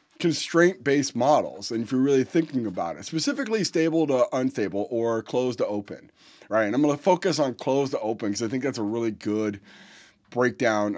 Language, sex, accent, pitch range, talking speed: English, male, American, 105-135 Hz, 190 wpm